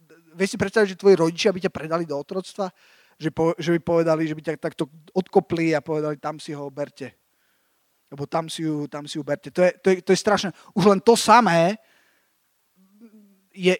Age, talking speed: 20-39, 205 wpm